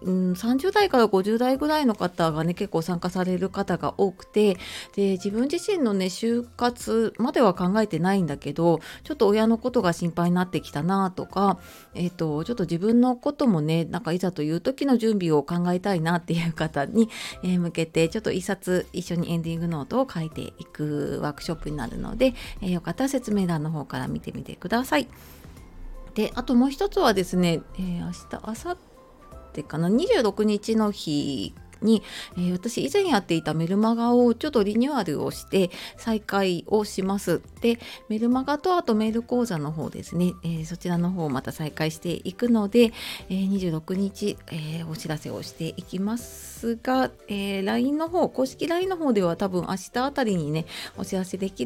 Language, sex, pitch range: Japanese, female, 165-225 Hz